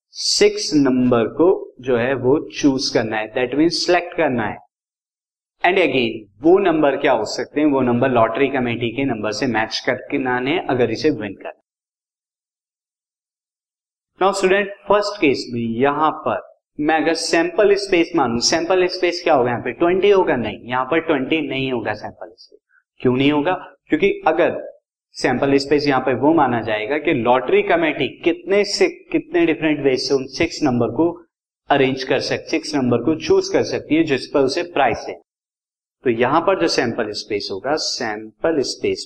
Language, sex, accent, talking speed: Hindi, male, native, 175 wpm